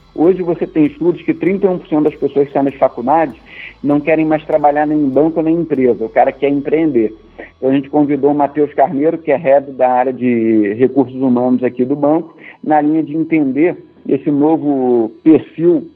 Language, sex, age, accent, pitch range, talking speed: Portuguese, male, 50-69, Brazilian, 130-155 Hz, 190 wpm